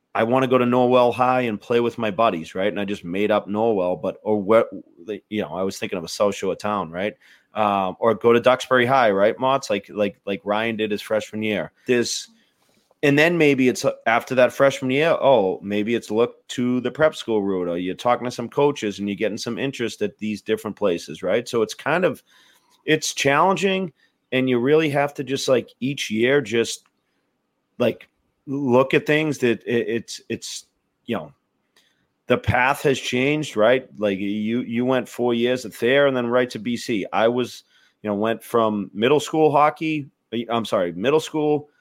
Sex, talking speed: male, 195 wpm